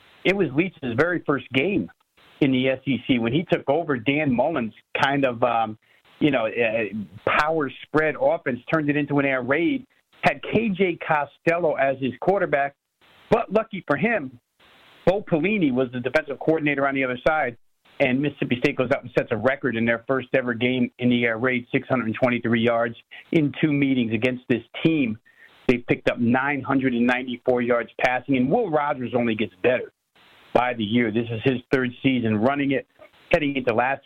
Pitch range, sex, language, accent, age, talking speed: 125-160 Hz, male, English, American, 50-69, 180 wpm